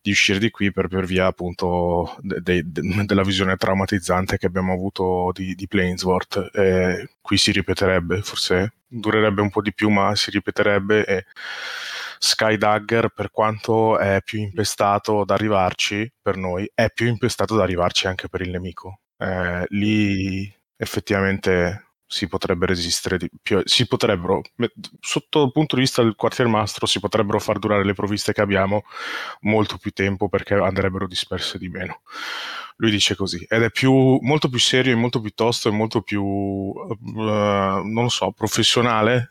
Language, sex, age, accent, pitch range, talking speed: Italian, male, 20-39, native, 95-110 Hz, 165 wpm